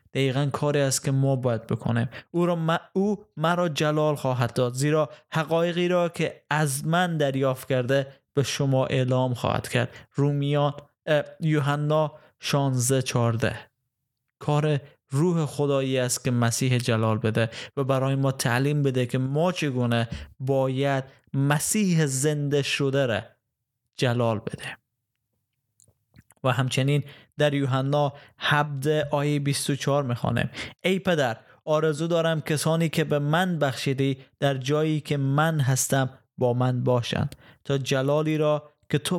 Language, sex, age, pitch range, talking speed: Persian, male, 20-39, 125-150 Hz, 130 wpm